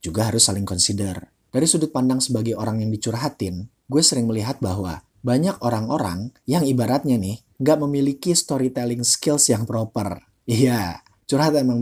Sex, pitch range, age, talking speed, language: male, 100-130 Hz, 30-49, 150 wpm, Indonesian